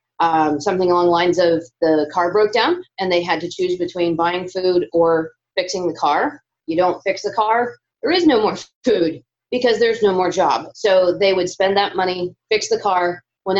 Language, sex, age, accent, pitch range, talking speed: English, female, 30-49, American, 160-195 Hz, 205 wpm